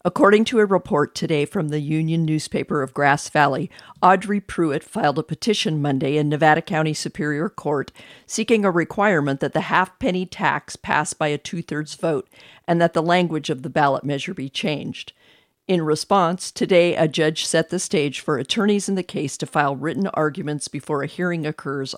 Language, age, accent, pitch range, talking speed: English, 50-69, American, 145-175 Hz, 185 wpm